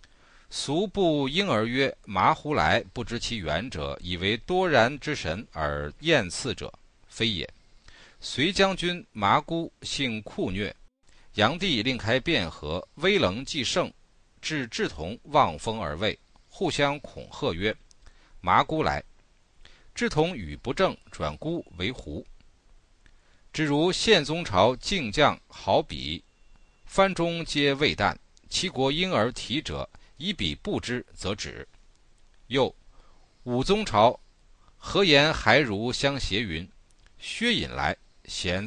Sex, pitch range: male, 95-155 Hz